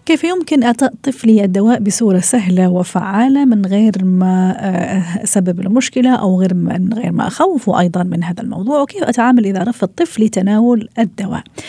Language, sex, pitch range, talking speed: Arabic, female, 185-245 Hz, 155 wpm